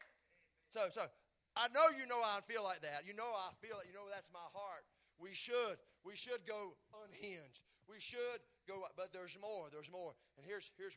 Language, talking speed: English, 200 wpm